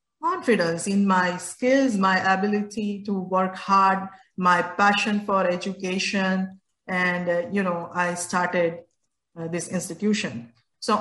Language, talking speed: English, 125 wpm